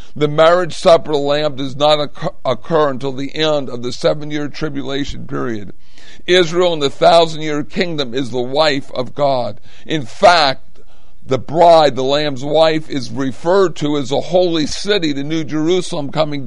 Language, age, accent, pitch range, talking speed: English, 60-79, American, 135-160 Hz, 165 wpm